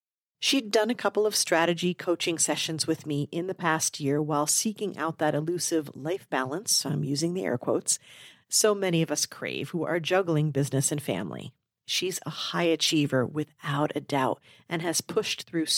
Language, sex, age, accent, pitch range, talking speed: English, female, 50-69, American, 150-190 Hz, 185 wpm